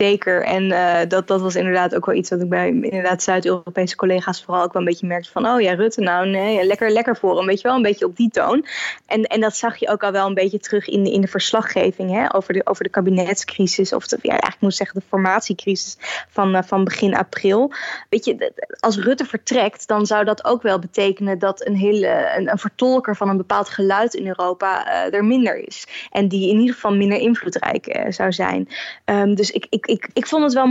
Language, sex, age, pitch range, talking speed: Dutch, female, 20-39, 195-245 Hz, 235 wpm